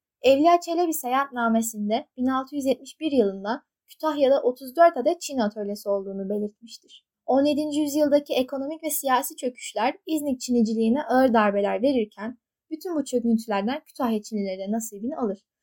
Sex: female